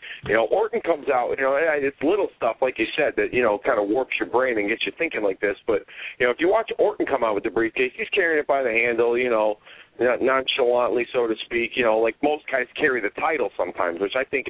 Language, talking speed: English, 265 wpm